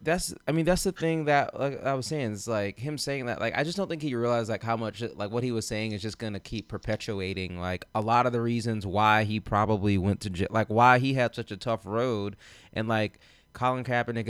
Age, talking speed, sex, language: 20-39, 255 wpm, male, English